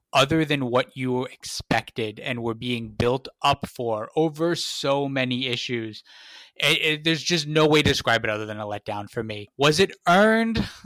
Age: 20-39